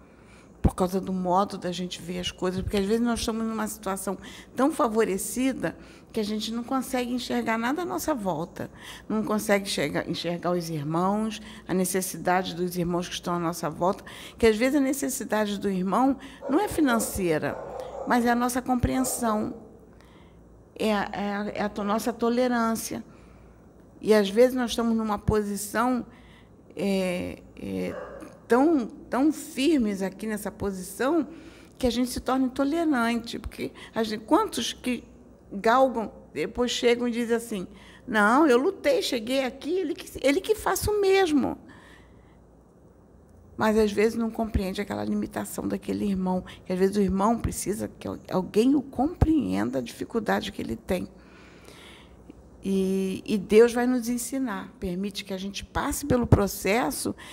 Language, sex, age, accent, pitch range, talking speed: Portuguese, female, 60-79, Brazilian, 195-255 Hz, 155 wpm